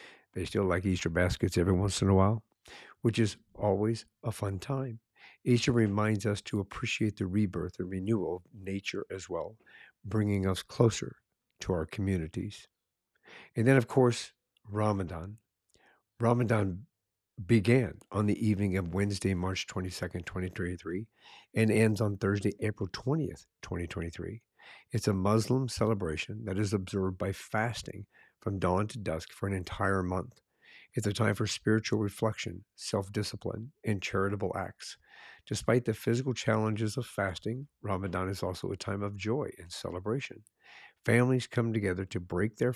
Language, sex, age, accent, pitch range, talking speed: English, male, 50-69, American, 95-110 Hz, 145 wpm